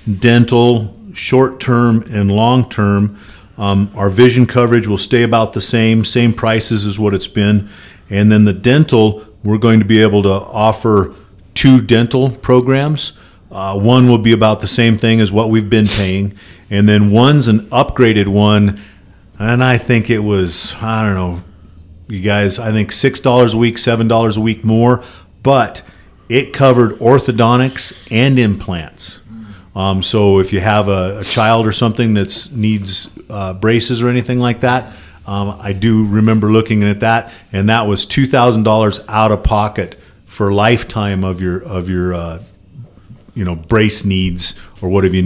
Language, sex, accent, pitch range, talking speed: English, male, American, 100-115 Hz, 160 wpm